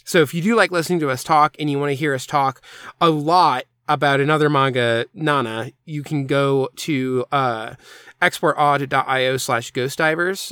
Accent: American